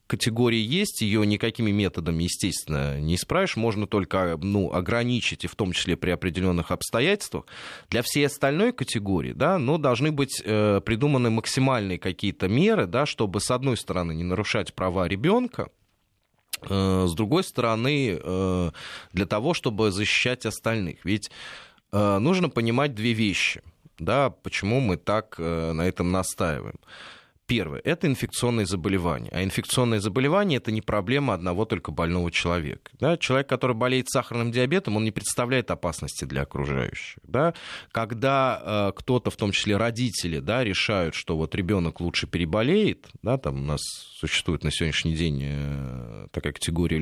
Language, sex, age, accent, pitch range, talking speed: Russian, male, 20-39, native, 90-125 Hz, 150 wpm